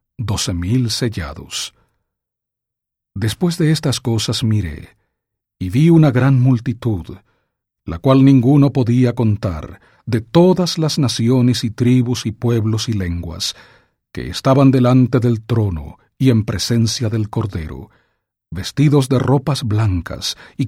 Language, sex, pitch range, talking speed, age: English, male, 105-130 Hz, 125 wpm, 40-59